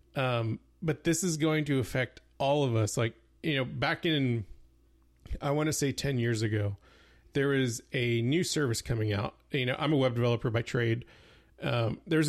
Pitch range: 115-145 Hz